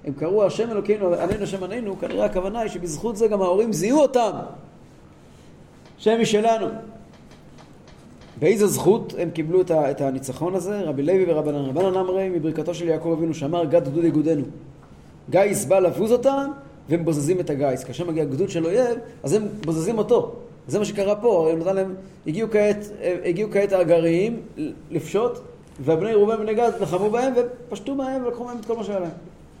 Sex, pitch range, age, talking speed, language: male, 165-220 Hz, 30-49, 160 wpm, Hebrew